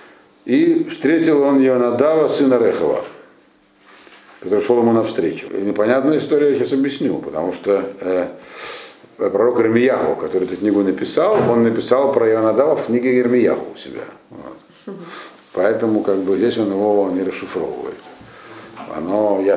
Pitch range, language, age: 110-155 Hz, Russian, 50-69